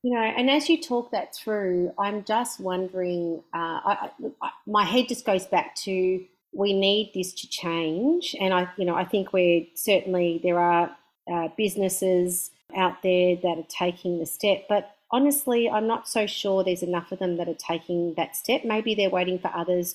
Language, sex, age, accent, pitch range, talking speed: English, female, 40-59, Australian, 175-215 Hz, 185 wpm